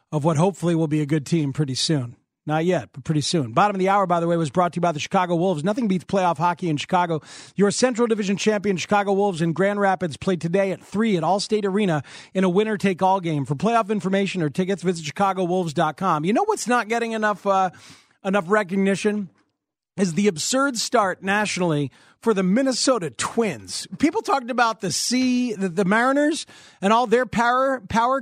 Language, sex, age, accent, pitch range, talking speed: English, male, 40-59, American, 170-230 Hz, 200 wpm